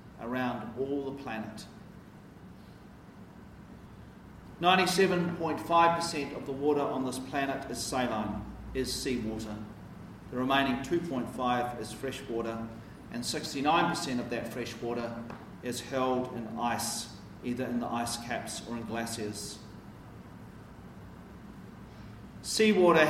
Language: English